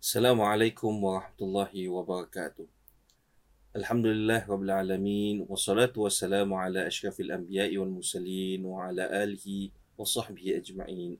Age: 30-49